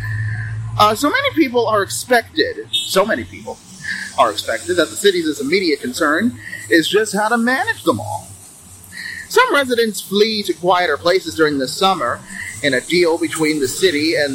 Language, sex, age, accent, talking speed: English, male, 30-49, American, 165 wpm